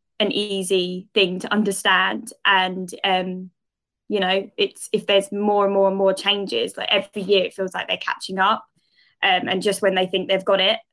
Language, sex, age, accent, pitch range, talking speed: English, female, 20-39, British, 185-210 Hz, 200 wpm